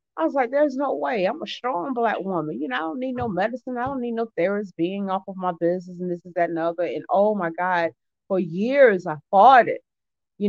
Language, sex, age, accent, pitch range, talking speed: English, female, 40-59, American, 170-225 Hz, 250 wpm